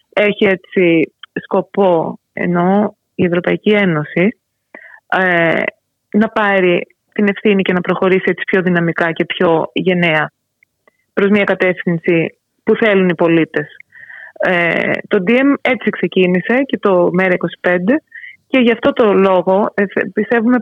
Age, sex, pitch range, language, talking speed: 20-39, female, 185-250 Hz, Greek, 120 wpm